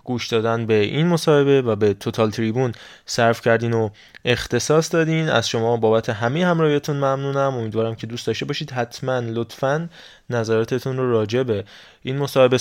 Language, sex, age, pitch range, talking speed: Persian, male, 20-39, 115-140 Hz, 150 wpm